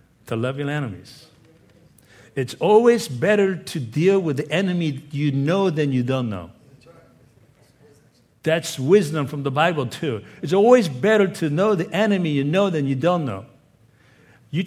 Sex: male